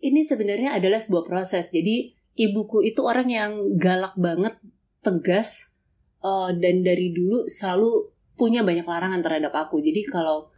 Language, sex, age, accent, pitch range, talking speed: Indonesian, female, 30-49, native, 180-225 Hz, 135 wpm